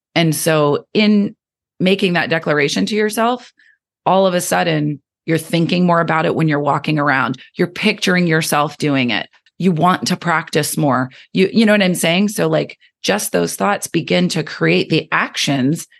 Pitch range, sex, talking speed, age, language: 145-200 Hz, female, 175 wpm, 30-49, English